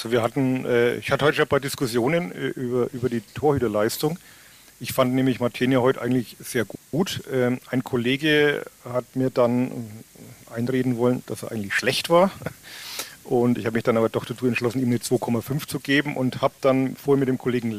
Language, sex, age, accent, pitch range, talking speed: German, male, 40-59, German, 115-135 Hz, 195 wpm